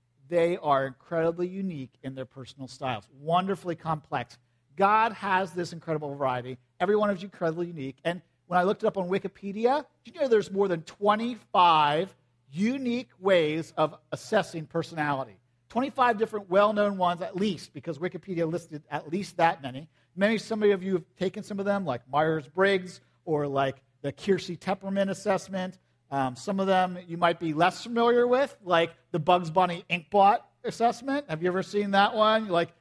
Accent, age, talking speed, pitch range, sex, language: American, 50-69, 175 wpm, 155-205 Hz, male, English